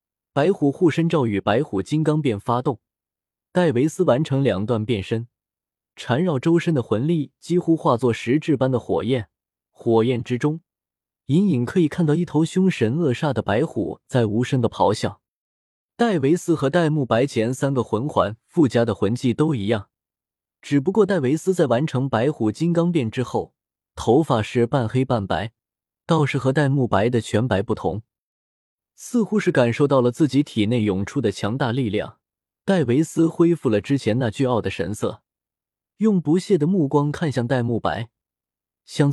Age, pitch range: 20-39, 115-165 Hz